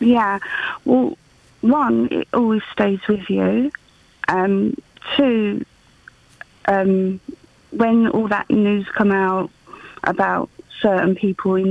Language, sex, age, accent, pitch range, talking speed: English, female, 30-49, British, 195-235 Hz, 110 wpm